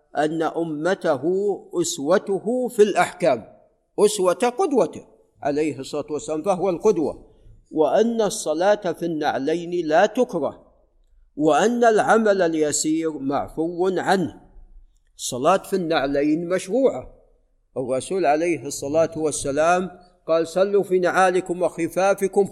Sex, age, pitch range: male, 50-69, 150-200 Hz